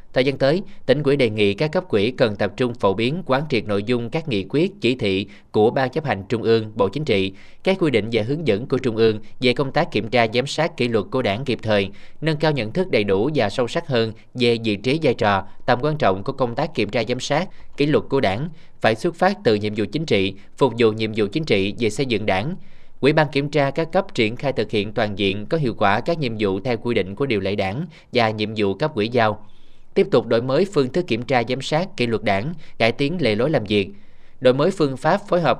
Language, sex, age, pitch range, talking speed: Vietnamese, male, 20-39, 110-145 Hz, 265 wpm